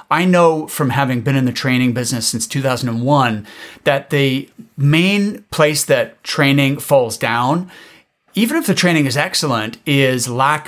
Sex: male